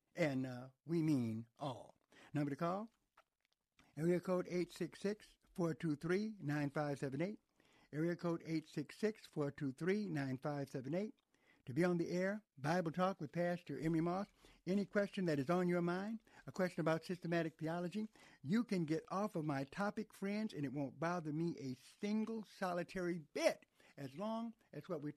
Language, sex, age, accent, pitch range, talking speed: English, male, 60-79, American, 140-185 Hz, 140 wpm